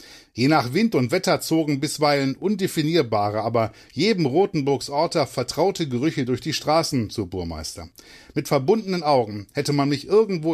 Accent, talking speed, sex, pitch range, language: German, 155 wpm, male, 120-155 Hz, German